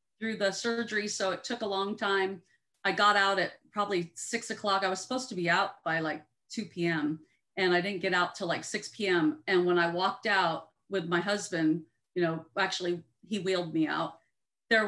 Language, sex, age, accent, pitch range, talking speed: English, female, 40-59, American, 170-200 Hz, 205 wpm